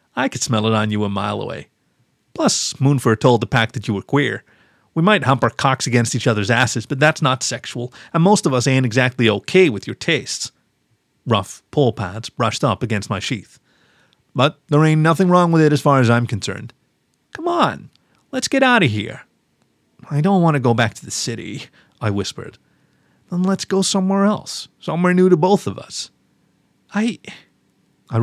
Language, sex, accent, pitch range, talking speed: English, male, American, 115-150 Hz, 195 wpm